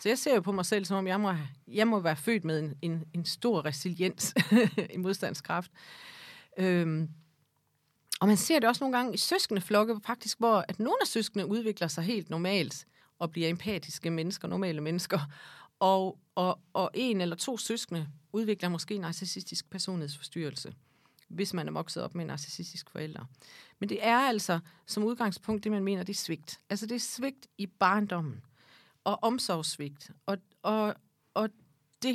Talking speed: 175 wpm